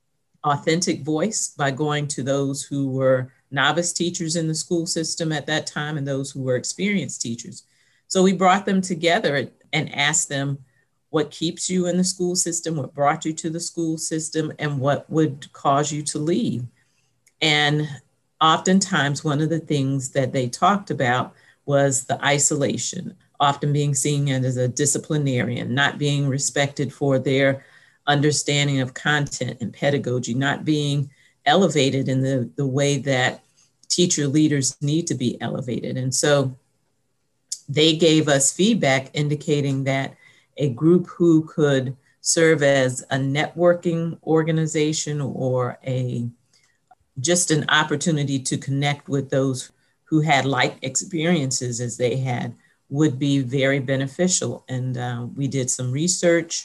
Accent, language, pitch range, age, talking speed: American, English, 135-160 Hz, 50-69, 145 wpm